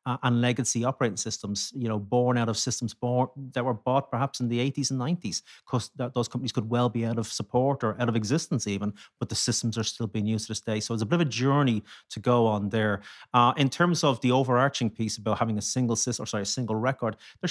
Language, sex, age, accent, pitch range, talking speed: English, male, 30-49, Irish, 110-130 Hz, 255 wpm